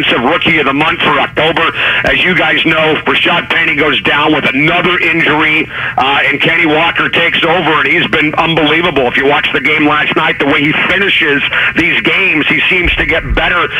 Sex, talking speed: male, 200 wpm